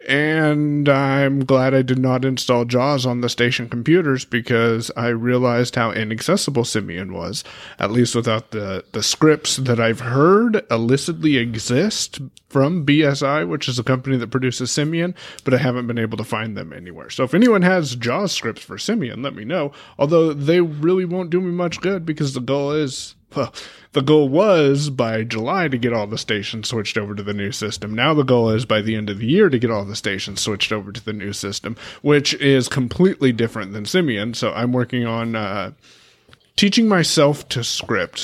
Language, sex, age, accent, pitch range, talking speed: English, male, 30-49, American, 110-140 Hz, 195 wpm